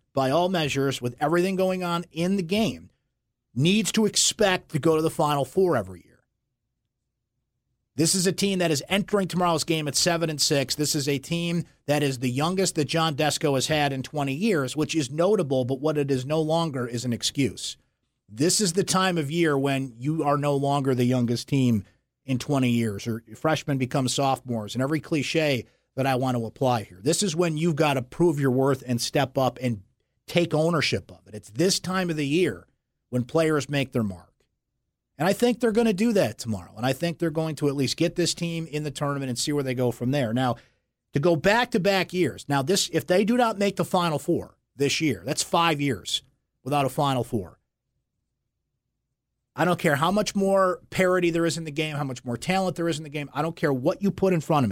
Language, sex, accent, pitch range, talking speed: English, male, American, 125-170 Hz, 225 wpm